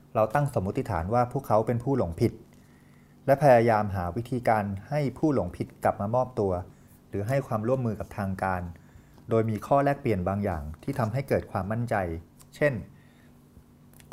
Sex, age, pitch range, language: male, 30-49, 95-125 Hz, Thai